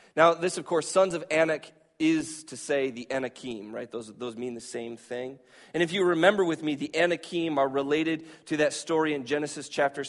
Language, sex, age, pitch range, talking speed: English, male, 30-49, 130-185 Hz, 210 wpm